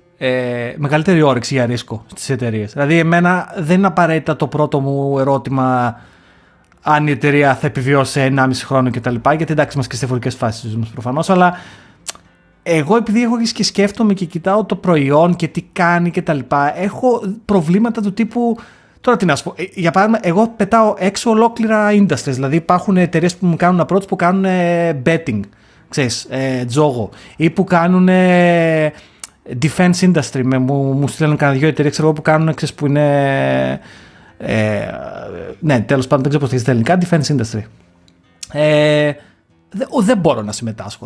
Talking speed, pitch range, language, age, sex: 170 wpm, 130-180 Hz, Greek, 30-49, male